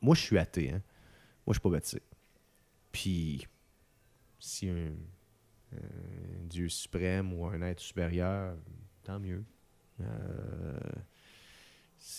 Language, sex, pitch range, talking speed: French, male, 90-110 Hz, 125 wpm